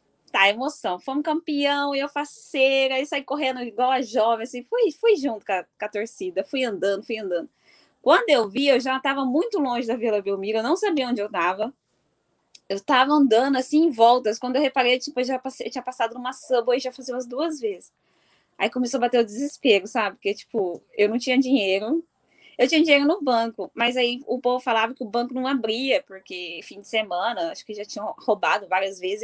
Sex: female